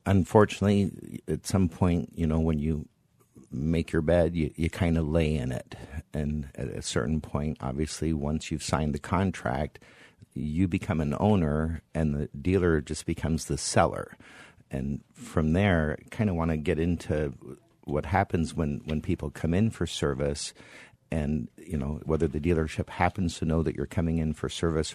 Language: English